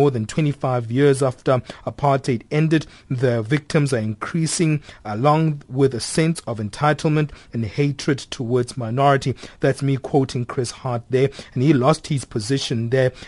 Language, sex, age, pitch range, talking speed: English, male, 30-49, 125-145 Hz, 150 wpm